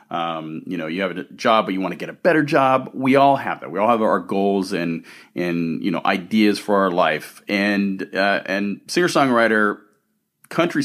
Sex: male